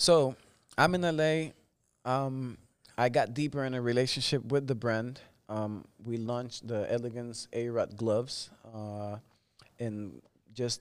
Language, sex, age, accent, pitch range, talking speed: English, male, 20-39, American, 110-130 Hz, 135 wpm